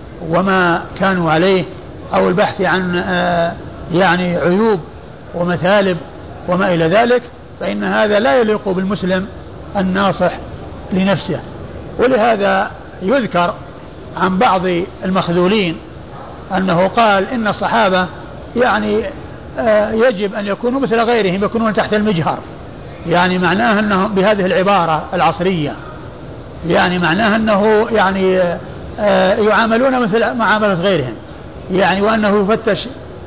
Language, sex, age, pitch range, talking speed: Arabic, male, 60-79, 175-210 Hz, 95 wpm